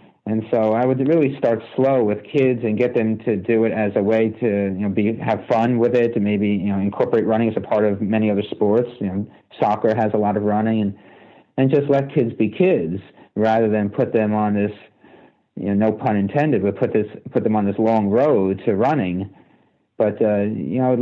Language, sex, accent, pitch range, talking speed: English, male, American, 100-110 Hz, 235 wpm